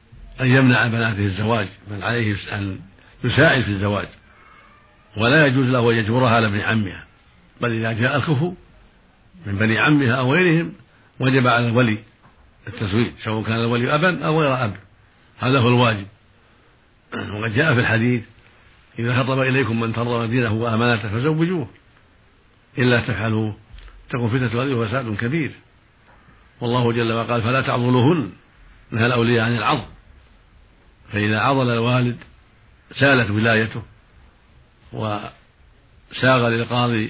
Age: 60-79